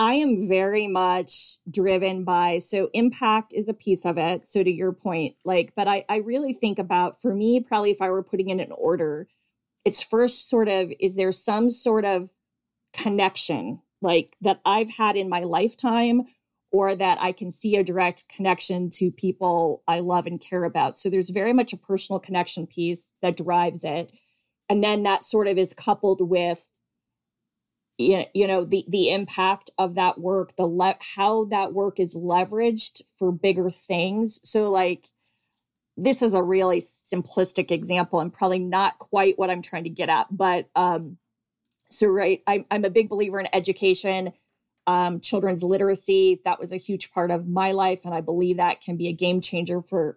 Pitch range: 180-205 Hz